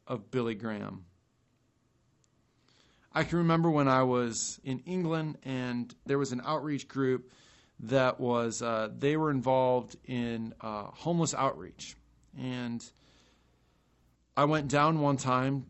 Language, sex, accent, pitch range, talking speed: English, male, American, 120-145 Hz, 125 wpm